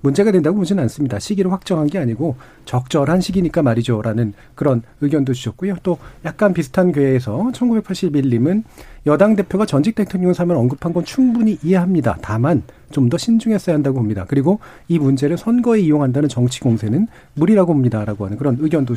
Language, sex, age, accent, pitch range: Korean, male, 40-59, native, 135-205 Hz